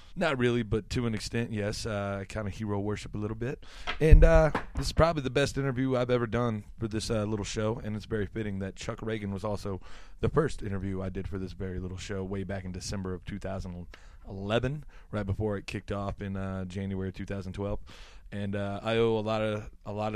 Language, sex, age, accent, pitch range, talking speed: English, male, 20-39, American, 95-115 Hz, 220 wpm